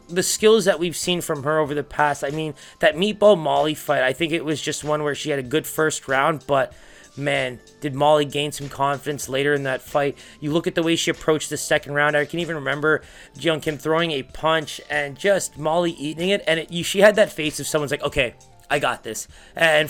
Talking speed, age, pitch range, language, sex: 240 wpm, 20-39, 140-175 Hz, English, male